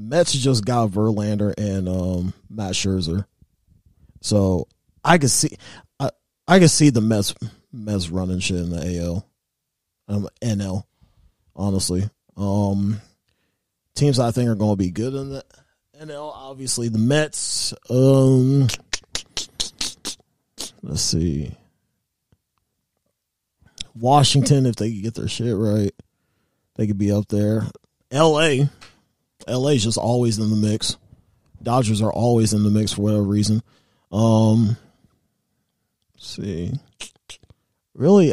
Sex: male